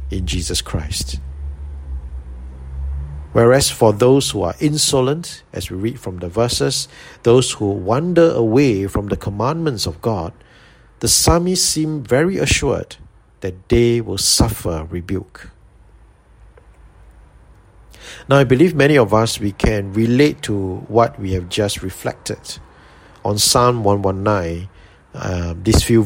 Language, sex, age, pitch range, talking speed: English, male, 50-69, 90-120 Hz, 125 wpm